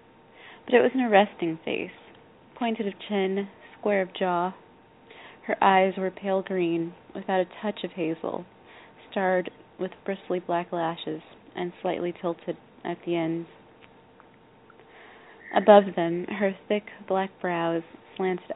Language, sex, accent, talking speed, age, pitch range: English, female, American, 130 wpm, 20-39, 170-195 Hz